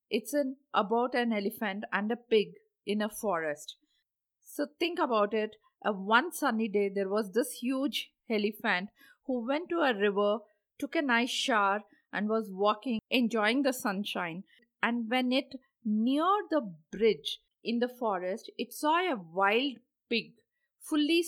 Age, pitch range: 50-69, 205-270 Hz